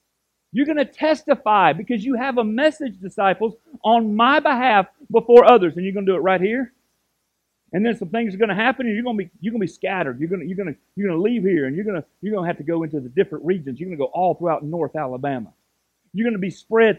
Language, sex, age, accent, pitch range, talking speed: English, male, 50-69, American, 175-225 Hz, 235 wpm